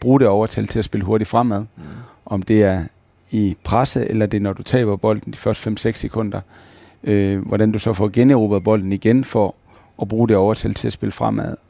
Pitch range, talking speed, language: 100-120 Hz, 210 wpm, Danish